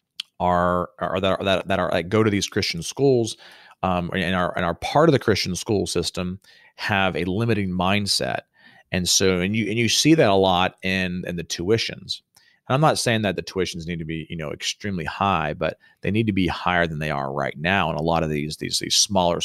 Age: 40-59